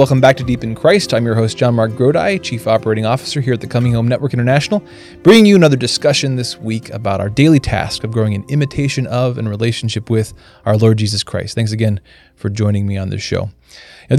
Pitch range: 105-130 Hz